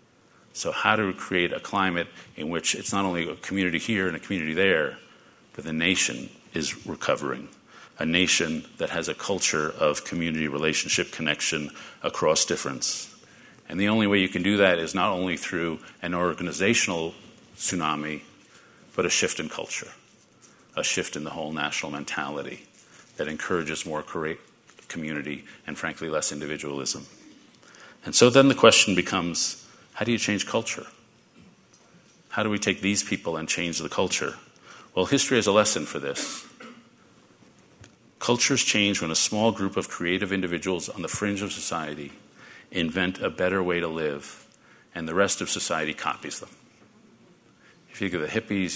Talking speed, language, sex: 160 wpm, English, male